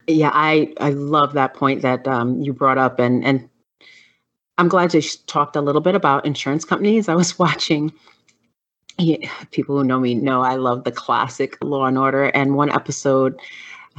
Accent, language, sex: American, English, female